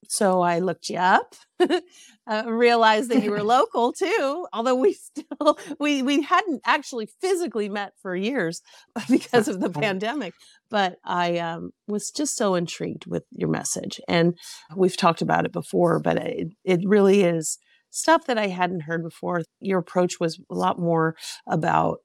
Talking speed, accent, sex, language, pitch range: 165 wpm, American, female, English, 170-235 Hz